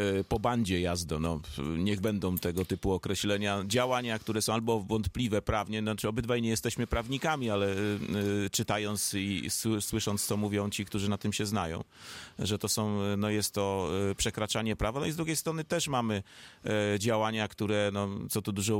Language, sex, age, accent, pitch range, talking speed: Polish, male, 30-49, native, 100-115 Hz, 150 wpm